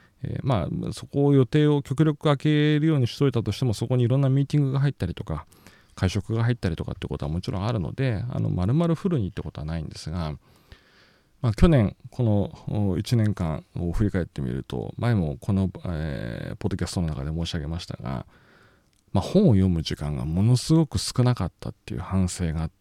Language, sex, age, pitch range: Japanese, male, 40-59, 90-130 Hz